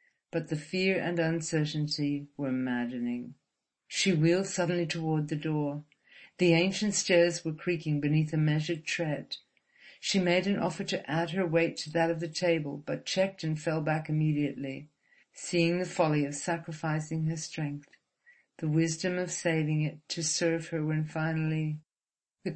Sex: female